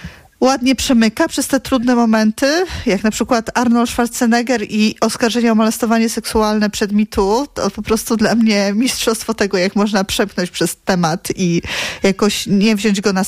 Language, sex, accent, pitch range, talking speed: Polish, female, native, 200-235 Hz, 165 wpm